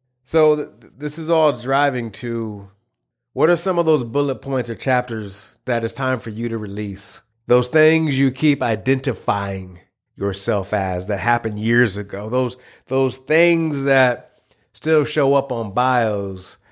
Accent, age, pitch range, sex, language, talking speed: American, 30-49, 105-135 Hz, male, English, 150 wpm